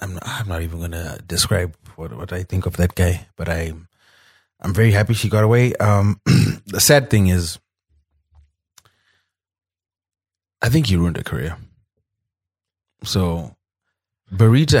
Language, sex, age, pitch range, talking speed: English, male, 30-49, 85-105 Hz, 145 wpm